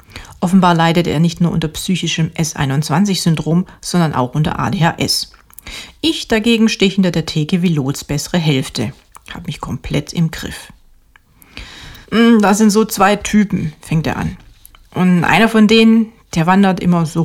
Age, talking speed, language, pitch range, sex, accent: 40-59, 150 wpm, German, 150-195 Hz, female, German